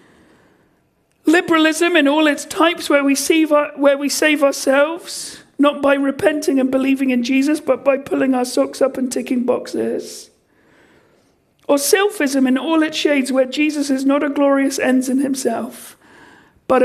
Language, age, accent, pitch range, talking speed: English, 50-69, British, 260-315 Hz, 150 wpm